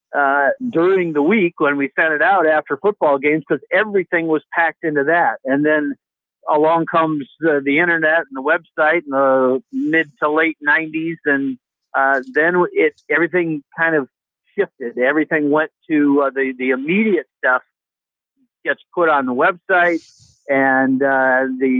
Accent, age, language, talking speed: American, 50-69, English, 160 wpm